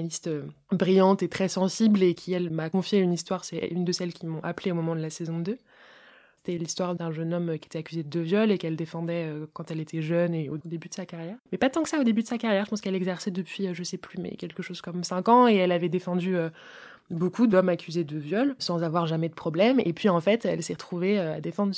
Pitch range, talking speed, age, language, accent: 170-195 Hz, 260 wpm, 20-39, French, French